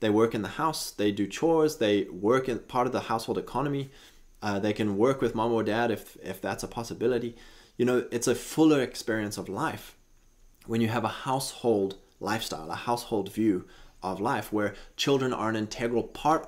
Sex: male